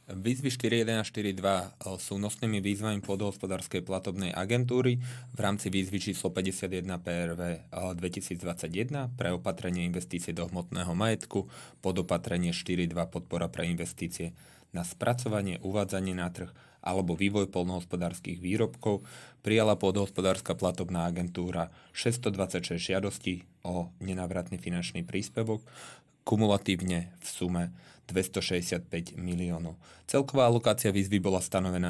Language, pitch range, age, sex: Slovak, 90-105 Hz, 30-49, male